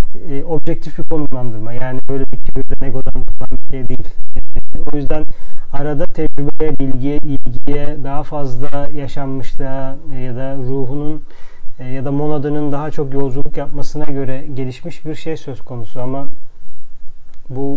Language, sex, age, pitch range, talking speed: Turkish, male, 40-59, 125-145 Hz, 140 wpm